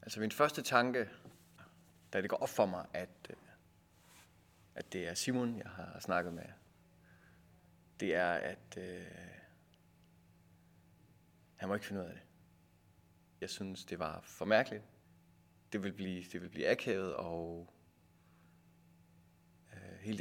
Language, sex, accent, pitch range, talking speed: Danish, male, native, 85-105 Hz, 125 wpm